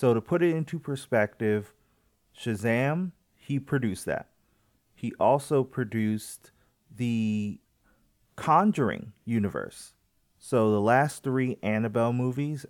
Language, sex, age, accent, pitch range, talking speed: English, male, 30-49, American, 105-125 Hz, 105 wpm